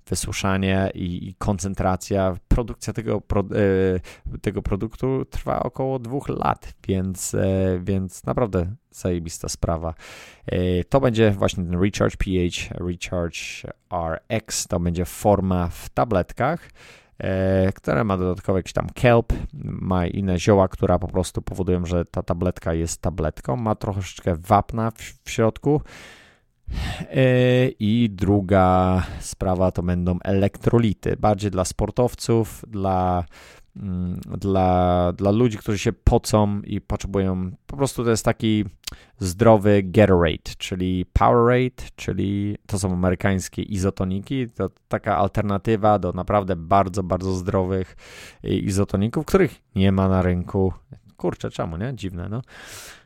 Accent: native